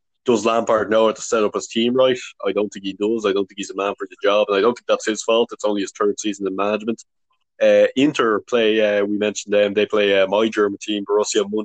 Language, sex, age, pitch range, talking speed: English, male, 20-39, 105-115 Hz, 270 wpm